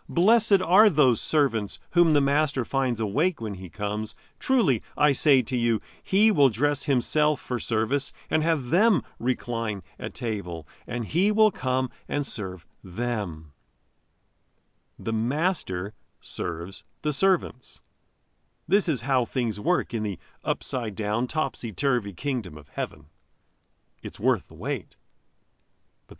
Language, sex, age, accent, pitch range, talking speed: English, male, 50-69, American, 100-150 Hz, 135 wpm